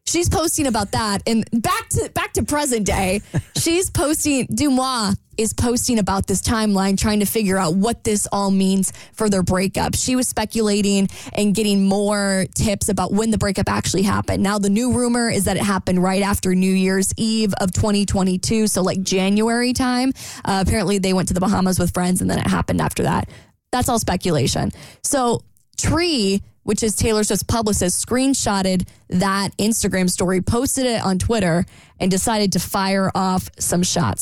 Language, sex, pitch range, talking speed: English, female, 190-235 Hz, 180 wpm